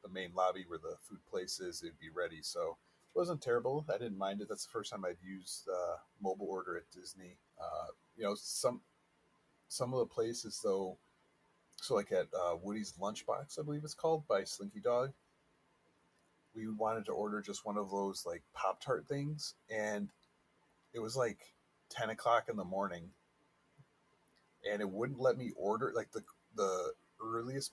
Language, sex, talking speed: English, male, 180 wpm